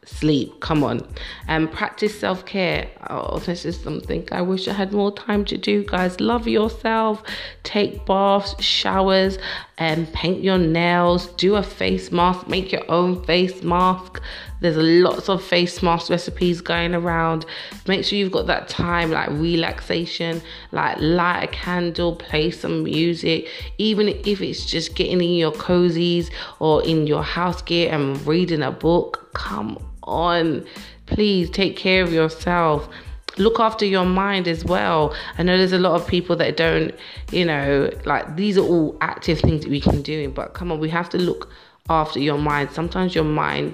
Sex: female